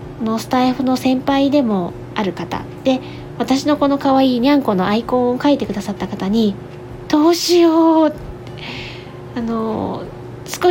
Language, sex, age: Japanese, female, 20-39